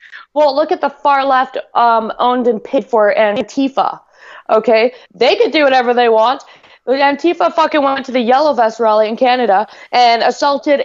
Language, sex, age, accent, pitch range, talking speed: English, female, 20-39, American, 240-295 Hz, 170 wpm